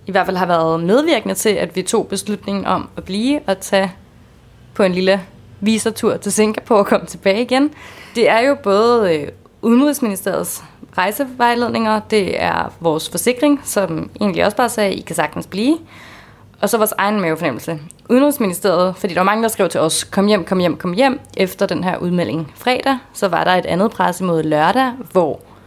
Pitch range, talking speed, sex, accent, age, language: 175-225 Hz, 185 wpm, female, native, 20-39, Danish